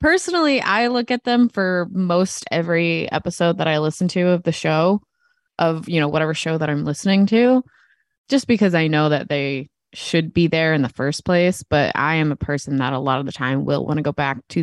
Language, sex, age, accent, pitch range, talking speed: English, female, 20-39, American, 150-195 Hz, 225 wpm